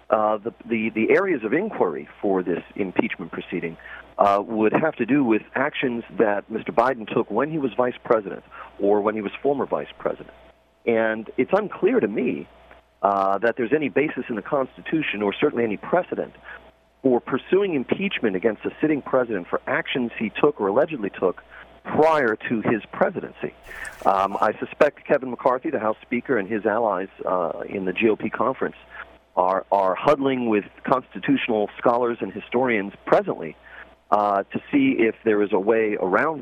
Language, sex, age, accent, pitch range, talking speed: English, male, 40-59, American, 105-135 Hz, 170 wpm